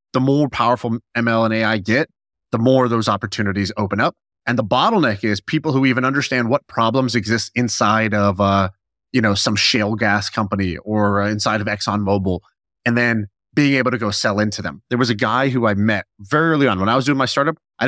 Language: English